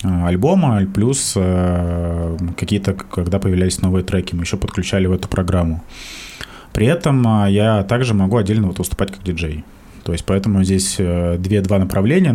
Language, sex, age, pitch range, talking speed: Russian, male, 20-39, 90-105 Hz, 140 wpm